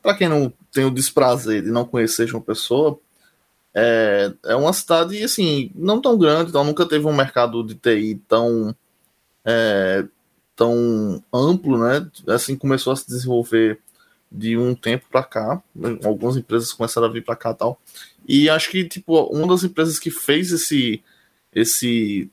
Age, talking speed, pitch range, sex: 20-39, 165 wpm, 120-155 Hz, male